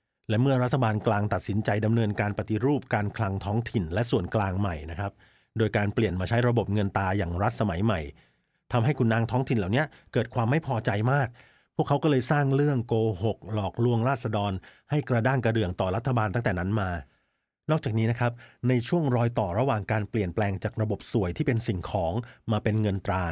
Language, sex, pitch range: Thai, male, 105-125 Hz